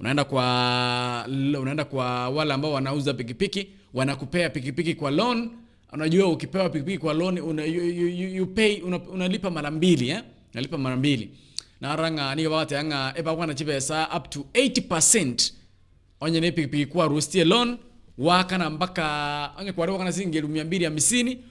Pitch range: 130-175 Hz